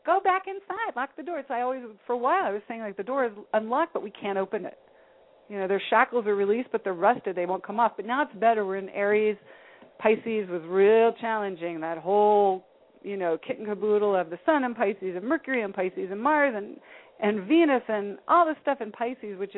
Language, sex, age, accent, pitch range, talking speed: English, female, 40-59, American, 195-245 Hz, 235 wpm